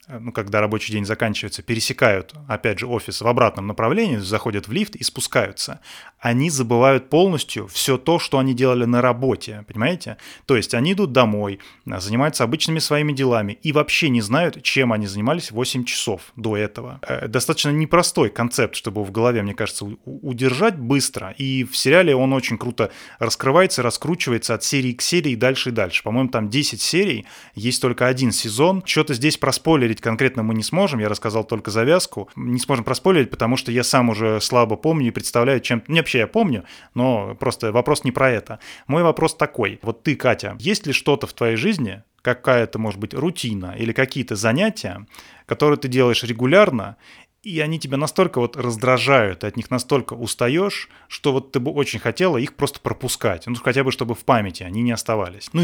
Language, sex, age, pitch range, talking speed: Russian, male, 20-39, 115-140 Hz, 180 wpm